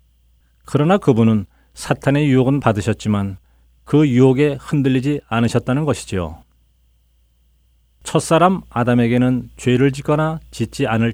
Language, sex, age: Korean, male, 40-59